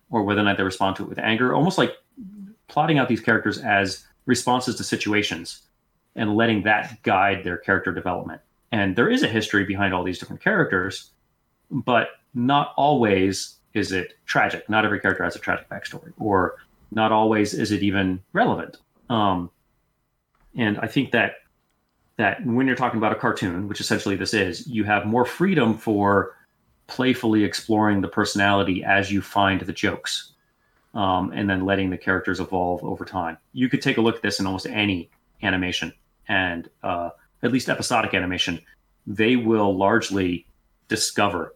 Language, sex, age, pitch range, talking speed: English, male, 30-49, 95-115 Hz, 170 wpm